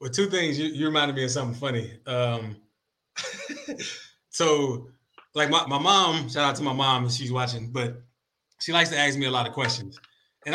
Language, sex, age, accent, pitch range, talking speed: English, male, 20-39, American, 125-160 Hz, 195 wpm